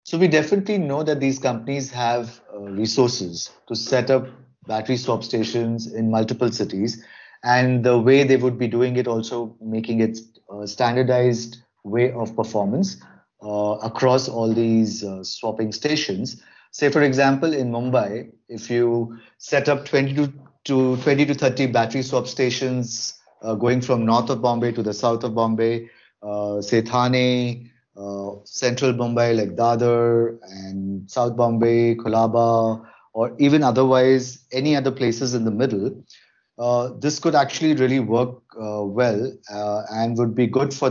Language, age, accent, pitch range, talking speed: English, 30-49, Indian, 110-130 Hz, 155 wpm